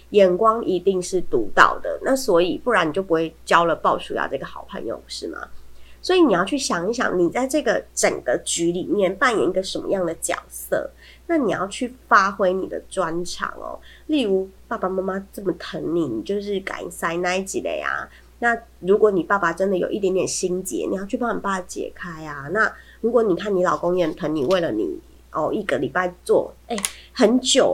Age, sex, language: 20-39, female, Chinese